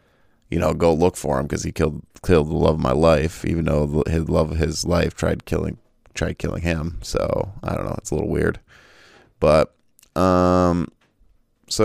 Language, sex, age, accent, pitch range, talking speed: English, male, 20-39, American, 80-95 Hz, 190 wpm